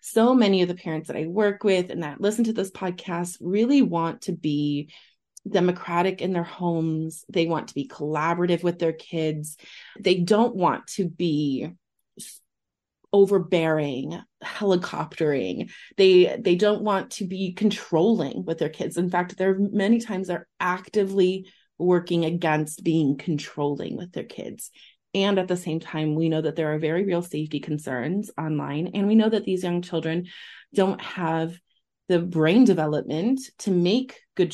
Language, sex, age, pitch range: English, female, 30-49, 160-210 Hz